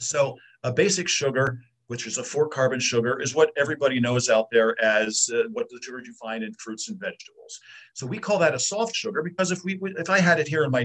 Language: English